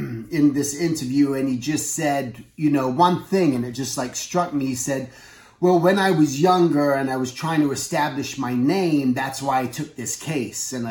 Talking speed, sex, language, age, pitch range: 215 wpm, male, English, 30-49, 135-170 Hz